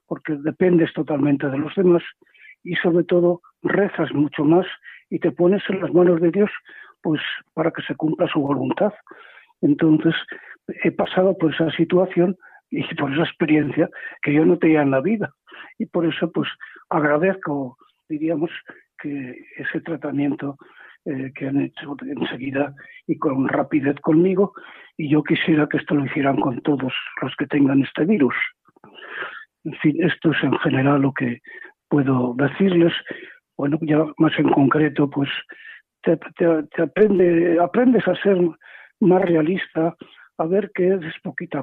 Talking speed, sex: 155 wpm, male